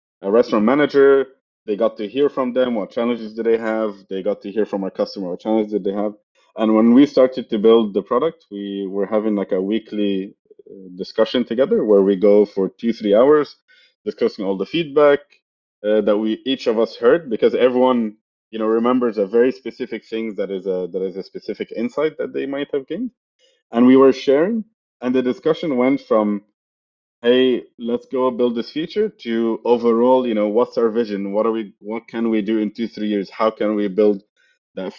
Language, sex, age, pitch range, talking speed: English, male, 30-49, 105-130 Hz, 200 wpm